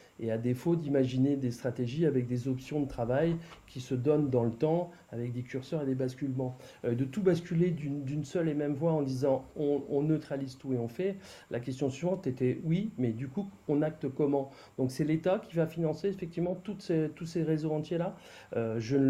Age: 40-59